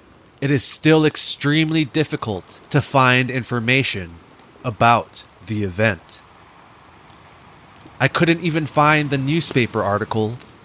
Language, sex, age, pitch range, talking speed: English, male, 20-39, 105-135 Hz, 100 wpm